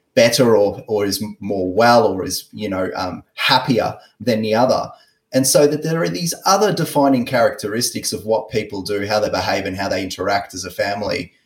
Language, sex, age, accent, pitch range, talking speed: English, male, 30-49, Australian, 110-145 Hz, 200 wpm